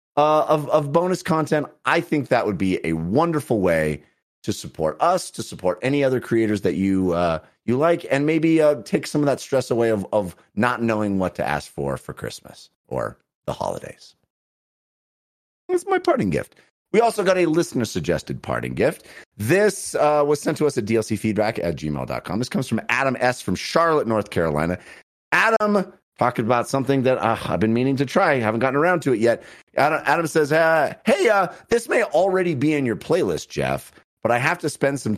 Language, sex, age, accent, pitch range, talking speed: English, male, 30-49, American, 105-160 Hz, 195 wpm